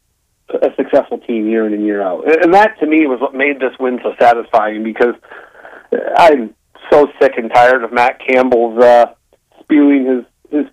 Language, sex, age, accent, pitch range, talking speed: English, male, 40-59, American, 125-150 Hz, 180 wpm